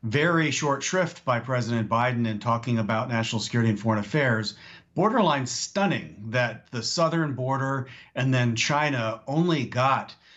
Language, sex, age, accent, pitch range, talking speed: English, male, 50-69, American, 115-140 Hz, 145 wpm